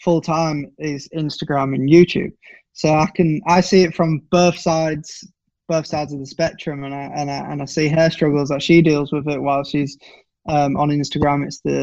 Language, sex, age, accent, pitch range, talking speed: English, male, 20-39, British, 145-175 Hz, 200 wpm